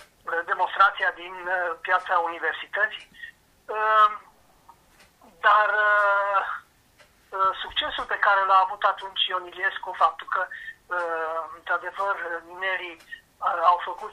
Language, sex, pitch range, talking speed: Romanian, male, 175-220 Hz, 75 wpm